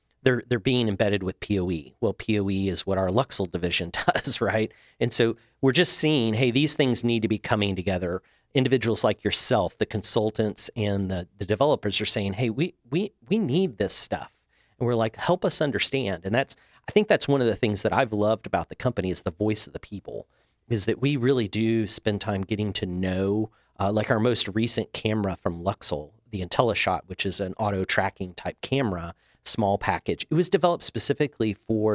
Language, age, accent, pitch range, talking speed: English, 40-59, American, 100-130 Hz, 200 wpm